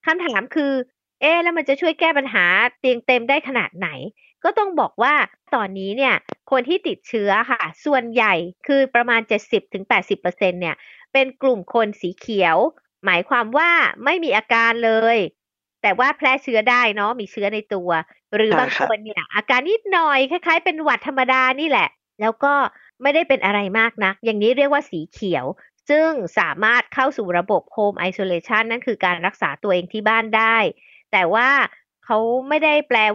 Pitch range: 210-280 Hz